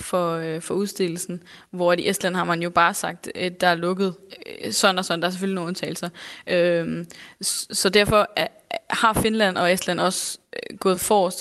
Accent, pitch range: native, 180-215 Hz